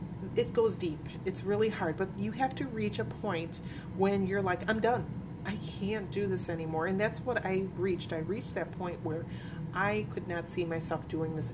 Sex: female